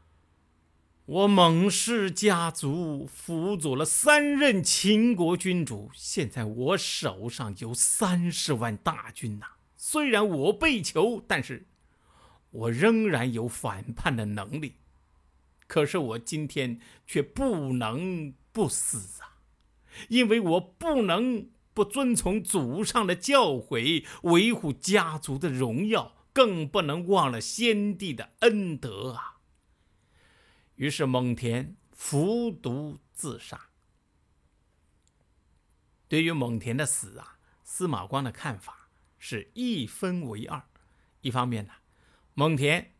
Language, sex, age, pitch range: Chinese, male, 50-69, 110-185 Hz